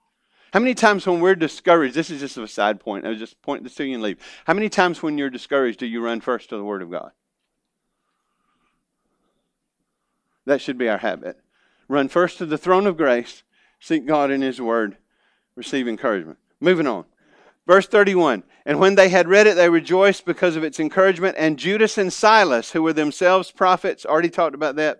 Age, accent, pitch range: 50-69, American, 140-195 Hz